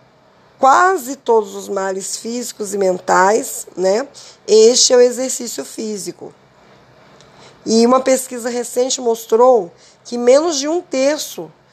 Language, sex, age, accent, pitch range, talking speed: Portuguese, female, 20-39, Brazilian, 205-250 Hz, 120 wpm